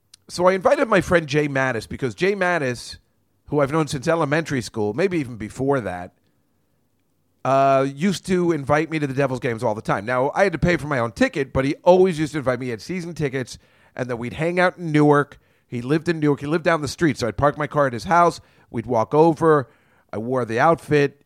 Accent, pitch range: American, 110-150 Hz